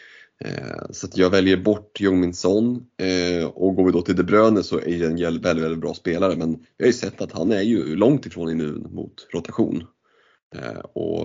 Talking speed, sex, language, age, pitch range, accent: 195 wpm, male, Swedish, 30-49, 85-105 Hz, native